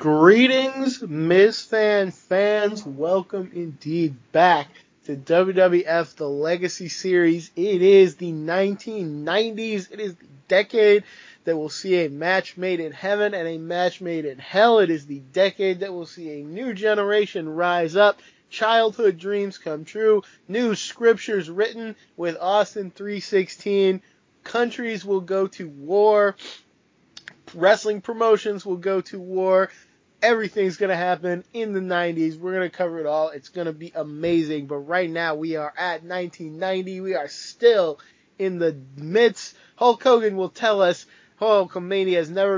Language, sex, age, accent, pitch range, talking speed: English, male, 20-39, American, 165-205 Hz, 145 wpm